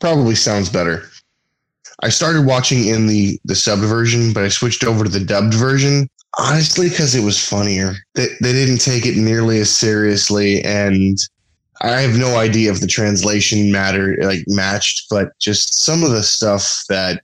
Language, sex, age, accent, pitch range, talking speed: English, male, 20-39, American, 100-125 Hz, 175 wpm